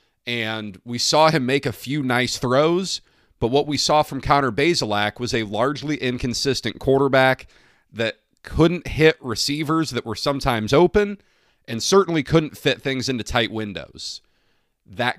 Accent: American